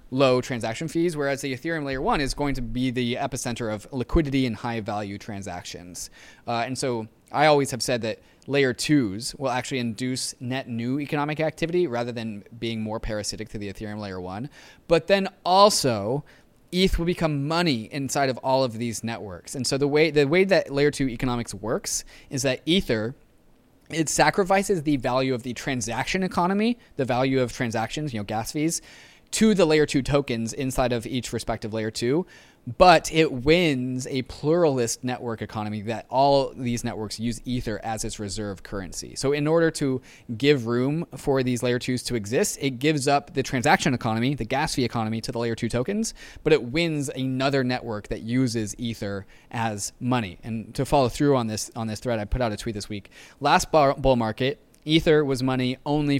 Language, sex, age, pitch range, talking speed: English, male, 20-39, 115-145 Hz, 190 wpm